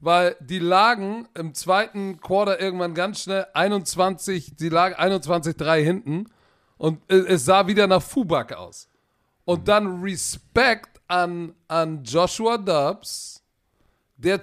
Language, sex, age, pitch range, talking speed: German, male, 40-59, 165-205 Hz, 120 wpm